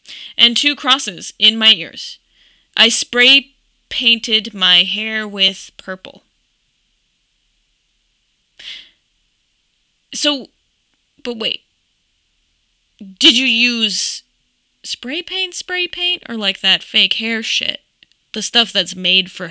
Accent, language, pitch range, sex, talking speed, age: American, English, 195-245 Hz, female, 95 wpm, 10-29